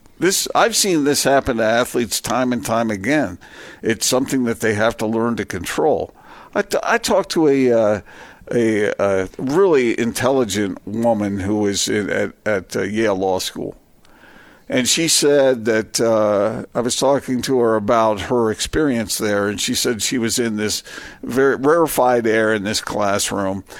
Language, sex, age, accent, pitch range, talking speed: English, male, 50-69, American, 105-130 Hz, 170 wpm